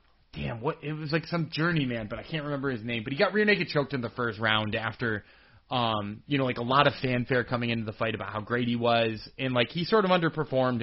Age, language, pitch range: 20-39, English, 110-145 Hz